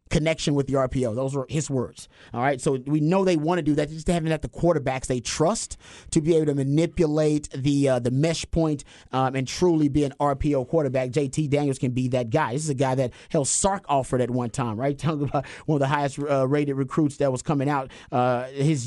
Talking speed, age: 235 wpm, 30-49